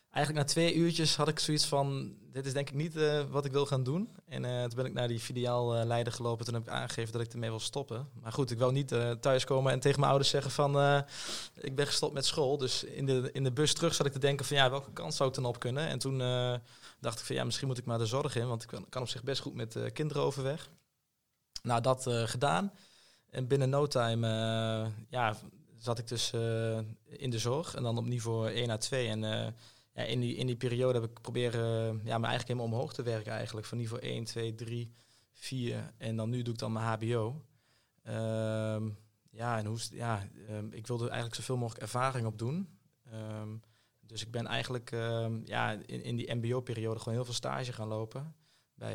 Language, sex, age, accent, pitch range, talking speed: Dutch, male, 20-39, Dutch, 115-135 Hz, 235 wpm